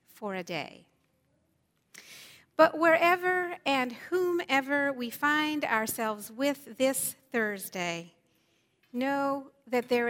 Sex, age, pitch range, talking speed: female, 50-69, 205-275 Hz, 95 wpm